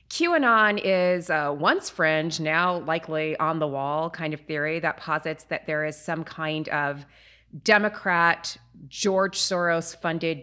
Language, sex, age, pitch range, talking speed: English, female, 30-49, 155-185 Hz, 140 wpm